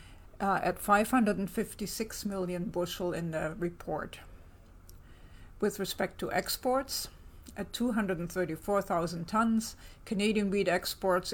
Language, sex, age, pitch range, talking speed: English, female, 50-69, 165-205 Hz, 95 wpm